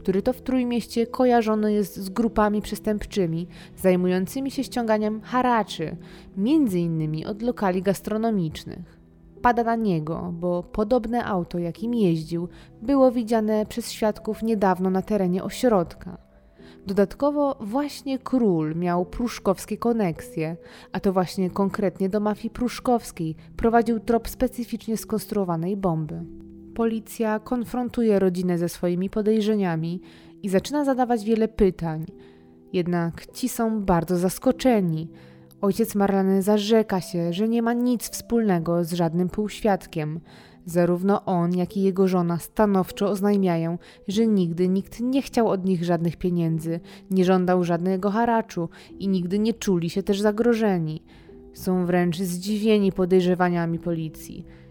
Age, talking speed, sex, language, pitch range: 20-39, 125 wpm, female, Polish, 175-225 Hz